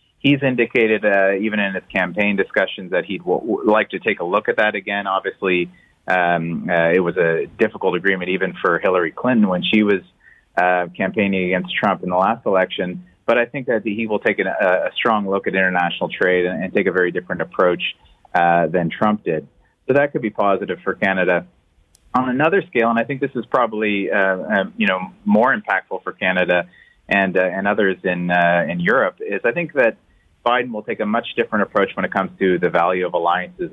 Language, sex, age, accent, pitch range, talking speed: English, male, 30-49, American, 90-110 Hz, 210 wpm